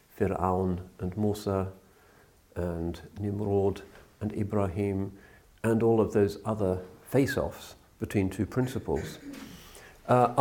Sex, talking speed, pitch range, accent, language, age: male, 100 wpm, 95-110 Hz, British, English, 50-69